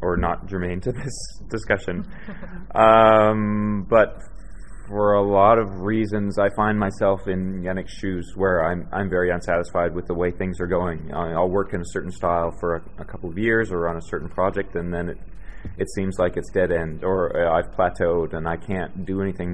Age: 30-49